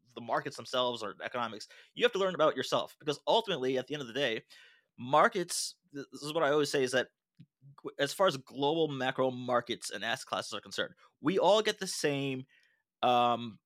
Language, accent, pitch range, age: English, American, 130-155 Hz, 20-39